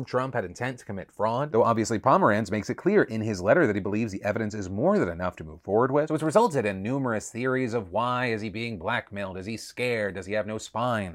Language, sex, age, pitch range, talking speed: English, male, 30-49, 105-125 Hz, 260 wpm